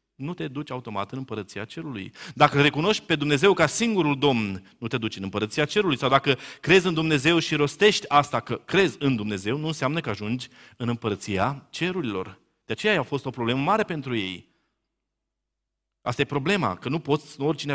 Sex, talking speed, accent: male, 185 wpm, native